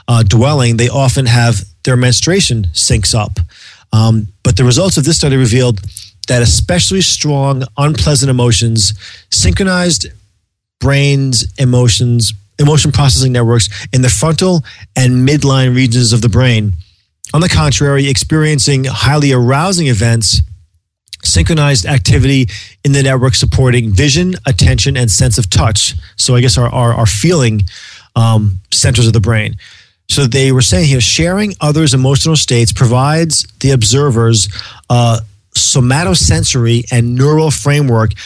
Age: 30-49